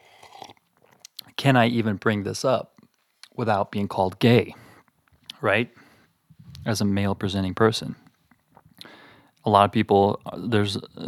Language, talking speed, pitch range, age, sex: English, 110 wpm, 100-125 Hz, 30-49, male